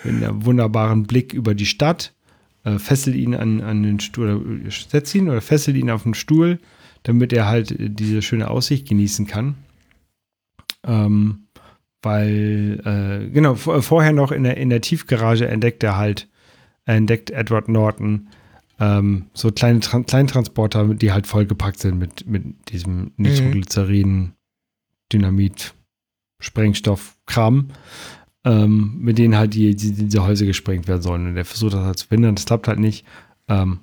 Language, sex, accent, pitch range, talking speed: German, male, German, 105-125 Hz, 155 wpm